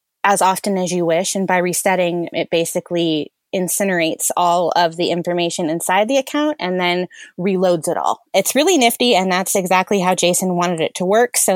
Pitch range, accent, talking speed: 175-215 Hz, American, 185 wpm